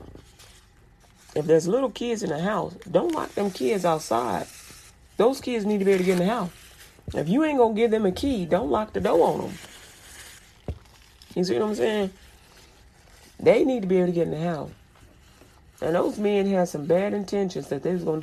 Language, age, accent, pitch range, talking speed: English, 40-59, American, 140-195 Hz, 210 wpm